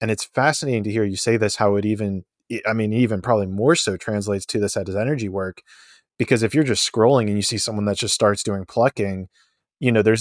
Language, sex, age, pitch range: English, male, 20-39, 105-130 Hz